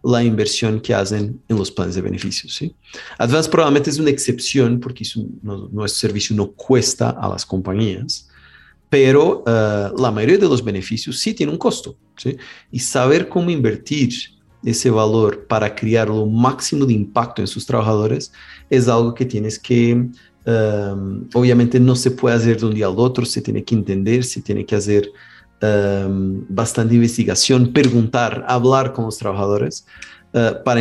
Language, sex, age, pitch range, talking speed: Spanish, male, 40-59, 105-125 Hz, 170 wpm